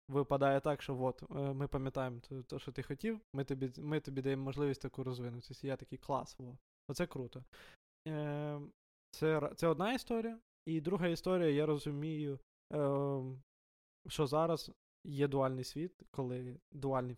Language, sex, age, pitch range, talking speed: Ukrainian, male, 20-39, 130-155 Hz, 150 wpm